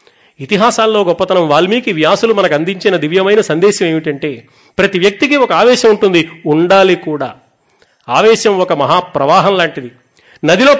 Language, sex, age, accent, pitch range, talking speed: Telugu, male, 40-59, native, 155-215 Hz, 115 wpm